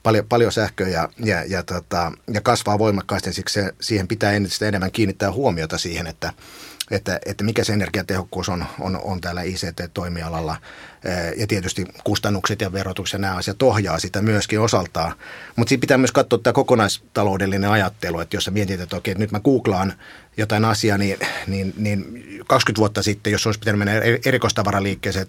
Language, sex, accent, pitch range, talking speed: Finnish, male, native, 95-110 Hz, 170 wpm